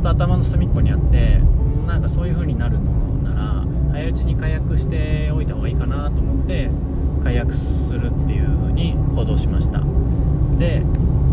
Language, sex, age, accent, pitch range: Japanese, male, 20-39, native, 65-85 Hz